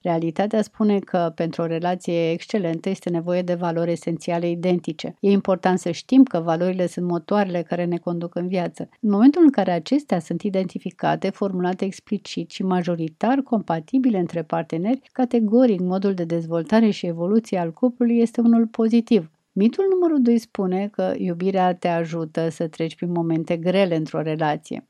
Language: Romanian